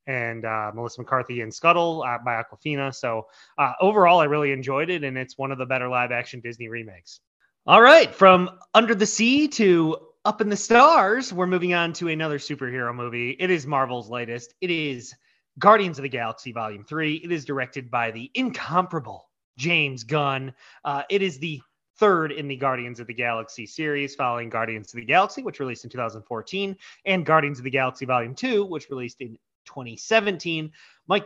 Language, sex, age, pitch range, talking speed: English, male, 30-49, 125-180 Hz, 185 wpm